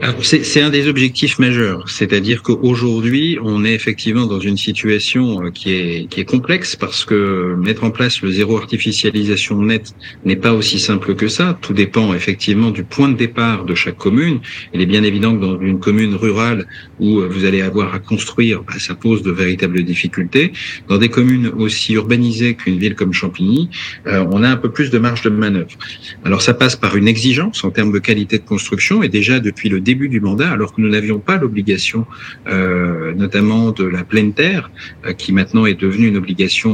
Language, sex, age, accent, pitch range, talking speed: French, male, 50-69, French, 100-120 Hz, 200 wpm